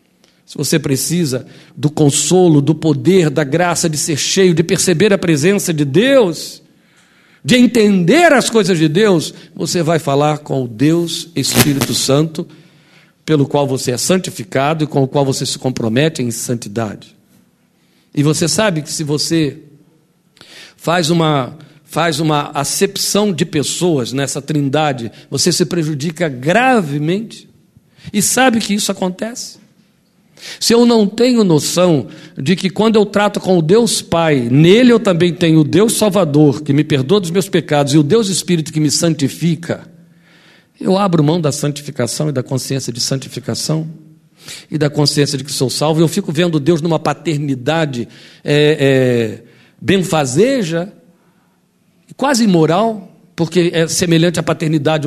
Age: 60-79